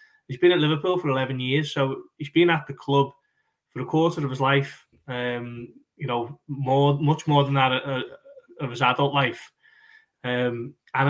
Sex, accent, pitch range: male, British, 125-150 Hz